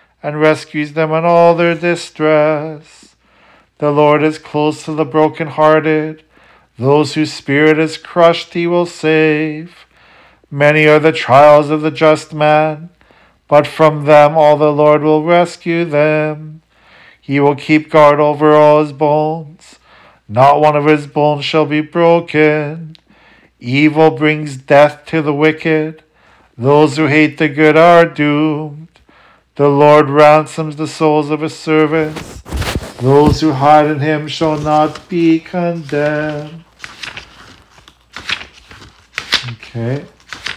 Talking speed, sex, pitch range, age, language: 125 wpm, male, 145-155 Hz, 50-69, English